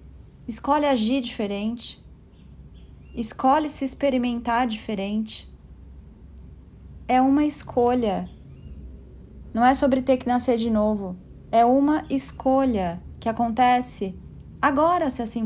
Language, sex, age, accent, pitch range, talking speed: Portuguese, female, 30-49, Brazilian, 195-255 Hz, 100 wpm